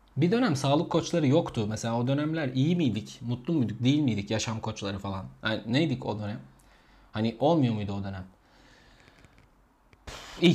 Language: Turkish